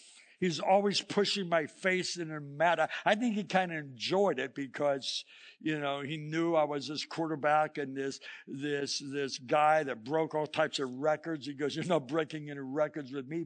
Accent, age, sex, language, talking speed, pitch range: American, 60-79, male, English, 200 wpm, 155-250 Hz